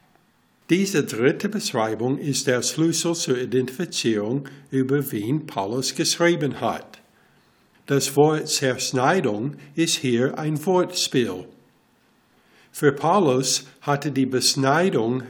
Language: German